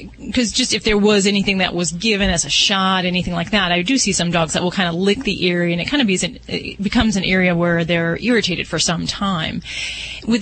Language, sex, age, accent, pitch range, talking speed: English, female, 30-49, American, 175-215 Hz, 235 wpm